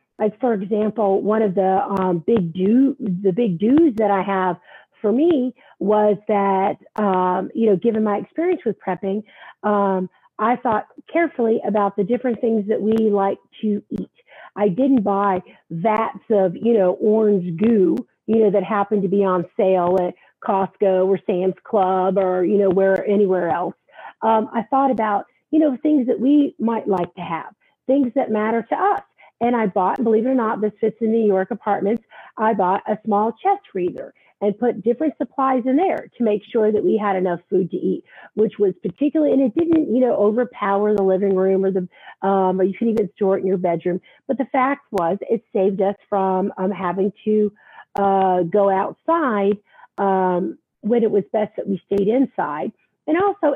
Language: English